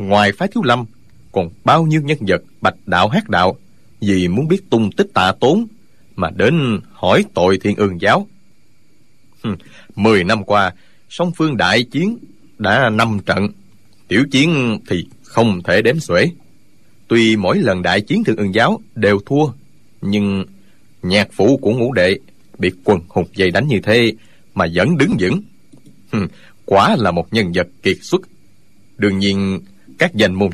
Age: 20-39